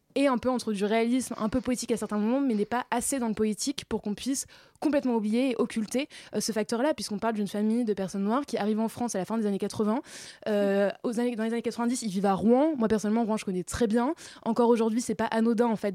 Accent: French